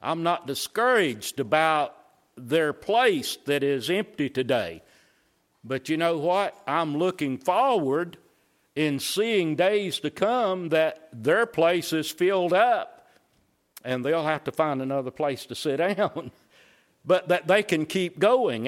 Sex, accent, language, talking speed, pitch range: male, American, English, 140 wpm, 140-190 Hz